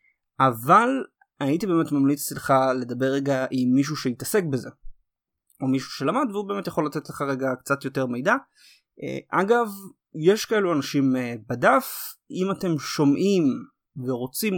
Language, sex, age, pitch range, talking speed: Hebrew, male, 20-39, 130-170 Hz, 130 wpm